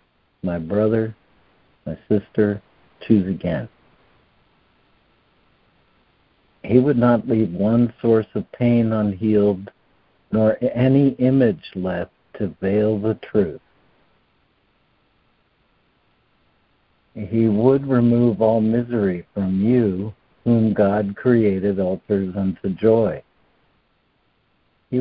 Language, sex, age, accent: English, male, 60-79, American